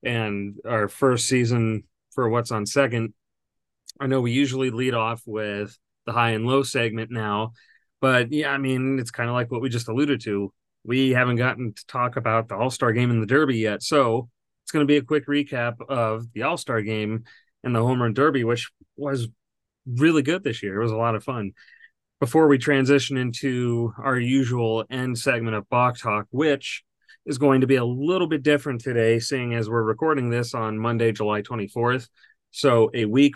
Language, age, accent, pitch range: English, 40-59, American, 115-135 Hz